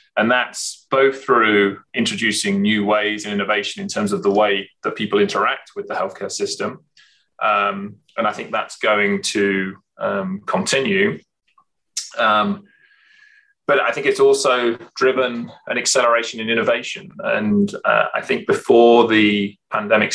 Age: 20-39